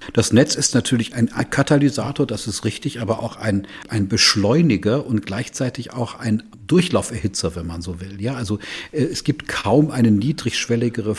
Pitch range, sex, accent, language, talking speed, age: 100-120 Hz, male, German, German, 160 wpm, 50-69